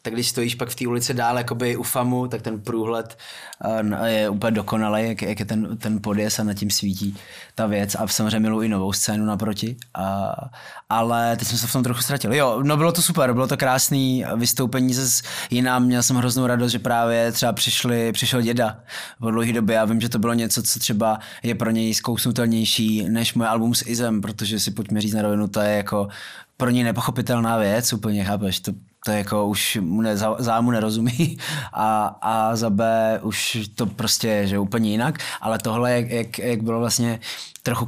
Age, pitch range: 20-39, 110-125 Hz